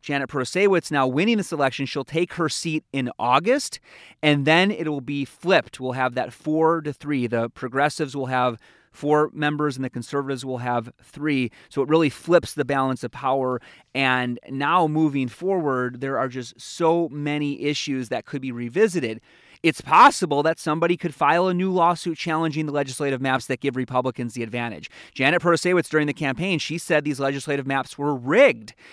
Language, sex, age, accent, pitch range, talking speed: English, male, 30-49, American, 120-150 Hz, 185 wpm